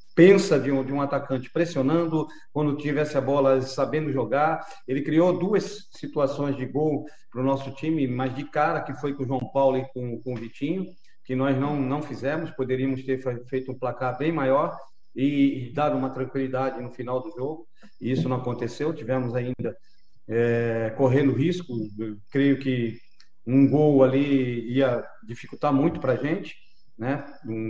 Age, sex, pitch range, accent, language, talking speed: 40-59, male, 130-155 Hz, Brazilian, Portuguese, 175 wpm